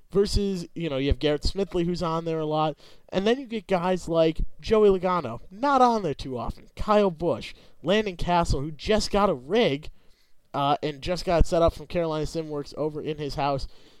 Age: 30-49